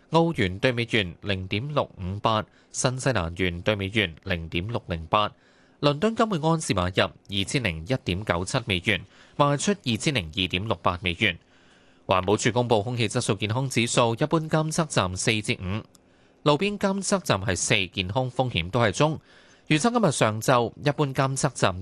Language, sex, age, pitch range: Chinese, male, 20-39, 100-145 Hz